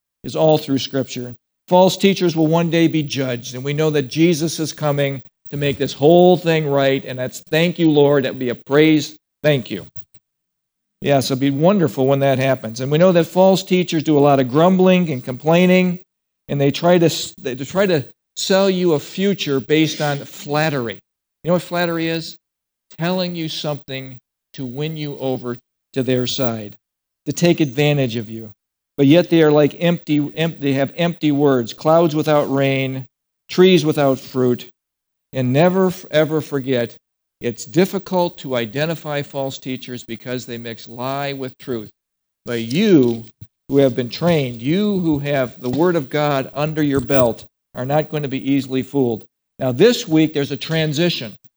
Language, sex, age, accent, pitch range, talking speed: English, male, 50-69, American, 130-165 Hz, 180 wpm